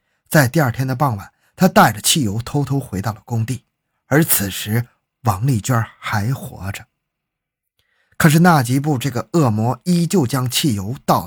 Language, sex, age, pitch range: Chinese, male, 20-39, 110-155 Hz